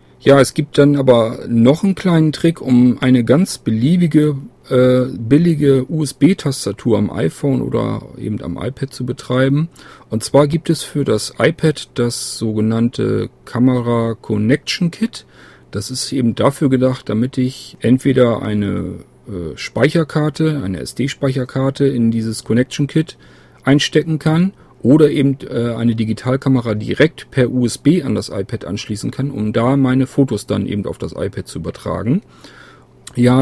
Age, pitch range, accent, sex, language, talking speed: 40-59, 115-140 Hz, German, male, German, 140 wpm